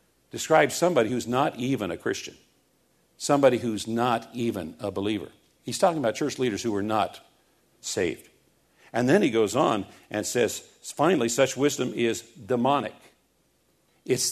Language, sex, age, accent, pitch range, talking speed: English, male, 50-69, American, 115-140 Hz, 145 wpm